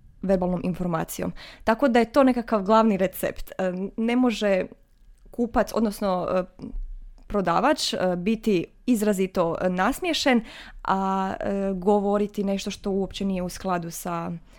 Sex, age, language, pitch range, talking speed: female, 20-39, Croatian, 185-235 Hz, 105 wpm